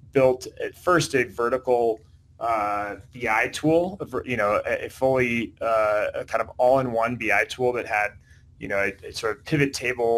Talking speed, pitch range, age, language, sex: 175 wpm, 115-145 Hz, 30-49, English, male